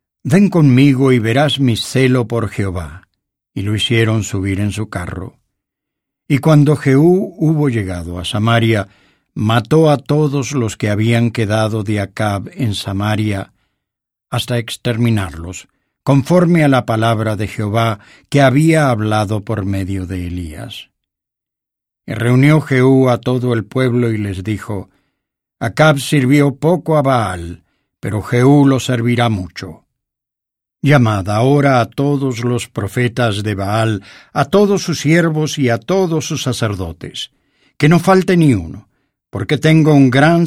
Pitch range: 105-140 Hz